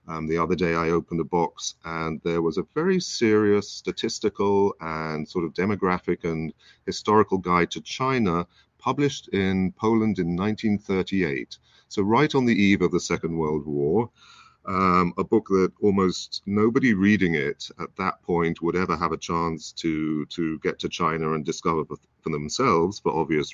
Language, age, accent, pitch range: English, 40-59, British, 80-105 Hz